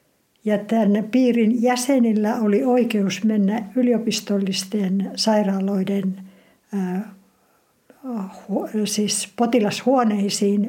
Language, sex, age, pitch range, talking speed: Finnish, female, 60-79, 205-235 Hz, 60 wpm